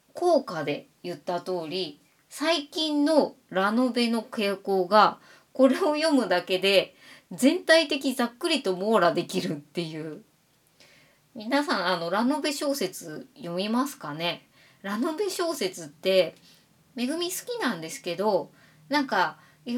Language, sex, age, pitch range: Japanese, female, 20-39, 185-290 Hz